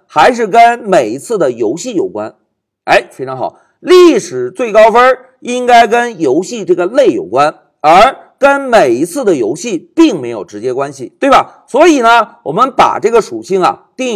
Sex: male